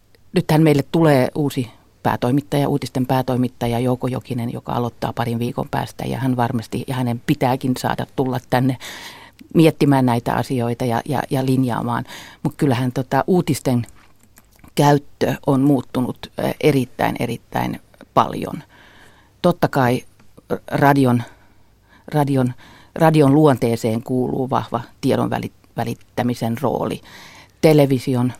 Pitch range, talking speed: 115-140 Hz, 110 wpm